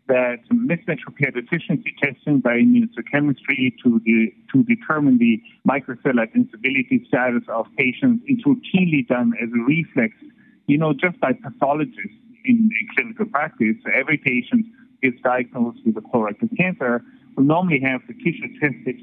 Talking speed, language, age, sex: 145 wpm, English, 50-69, male